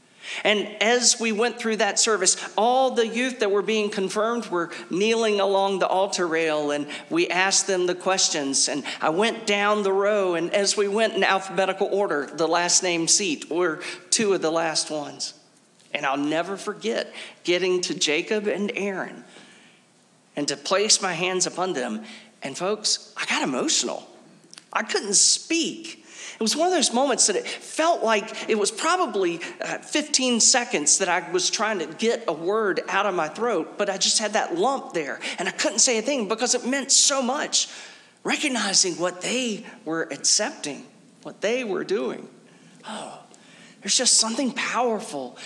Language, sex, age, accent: English, male, 40-59, American